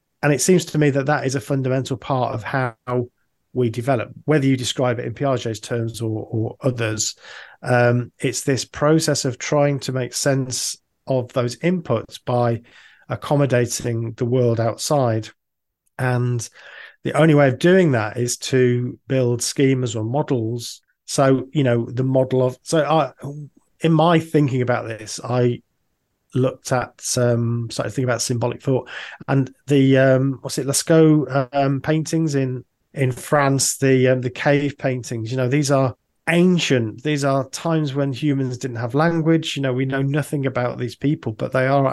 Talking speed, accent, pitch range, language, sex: 165 wpm, British, 120-140 Hz, English, male